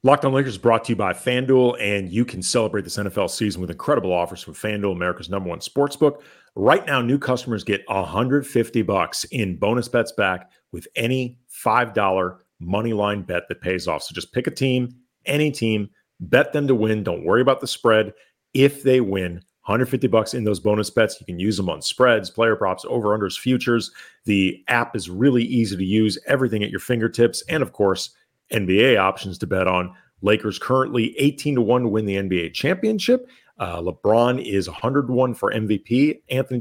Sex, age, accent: male, 40-59, American